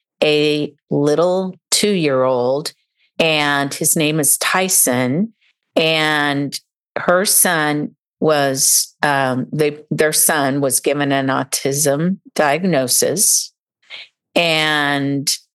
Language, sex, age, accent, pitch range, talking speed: English, female, 50-69, American, 130-155 Hz, 95 wpm